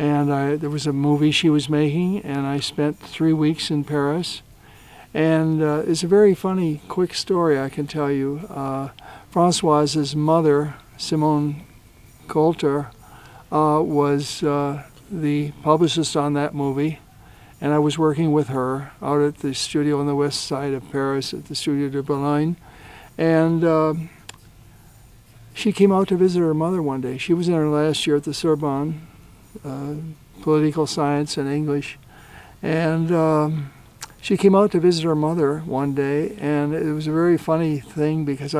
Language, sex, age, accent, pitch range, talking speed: English, male, 60-79, American, 140-155 Hz, 165 wpm